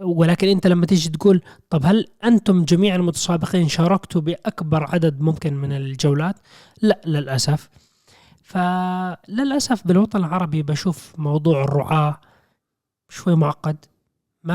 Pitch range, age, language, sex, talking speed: 140-175 Hz, 20-39, Arabic, male, 110 wpm